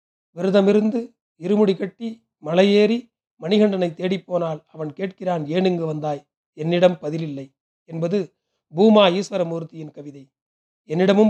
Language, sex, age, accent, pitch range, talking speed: Tamil, male, 40-59, native, 160-200 Hz, 90 wpm